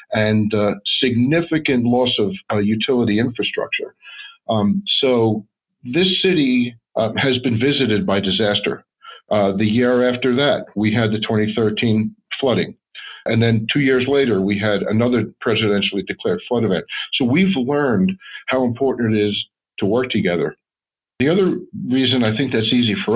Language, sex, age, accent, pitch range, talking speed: English, male, 50-69, American, 105-130 Hz, 150 wpm